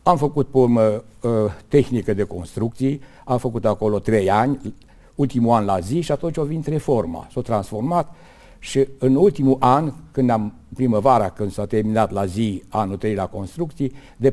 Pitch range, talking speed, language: 105-135 Hz, 165 wpm, Romanian